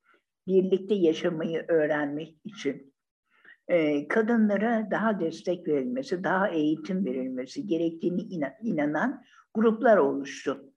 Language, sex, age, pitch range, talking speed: Turkish, female, 60-79, 195-255 Hz, 90 wpm